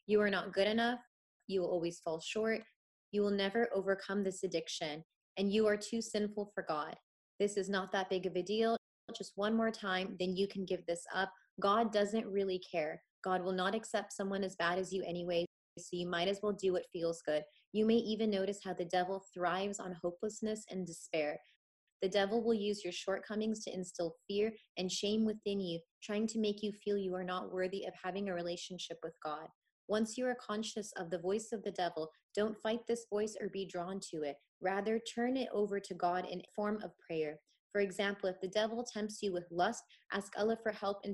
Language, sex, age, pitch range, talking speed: English, female, 20-39, 185-210 Hz, 215 wpm